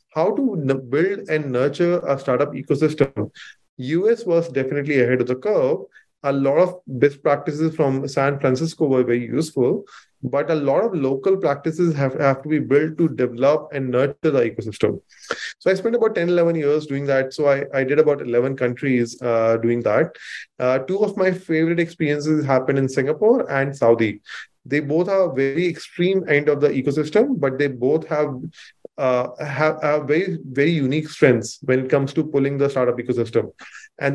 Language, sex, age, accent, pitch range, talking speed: English, male, 20-39, Indian, 125-155 Hz, 180 wpm